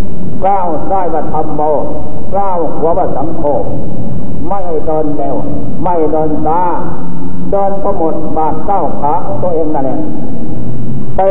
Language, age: Thai, 60-79